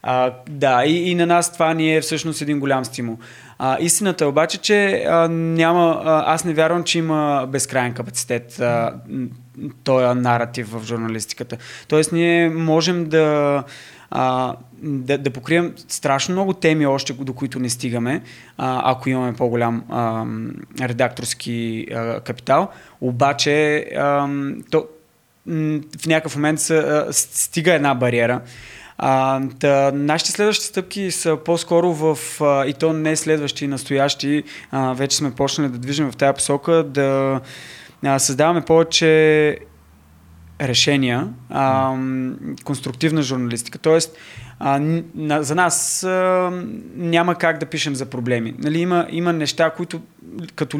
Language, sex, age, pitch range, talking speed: Bulgarian, male, 20-39, 130-160 Hz, 135 wpm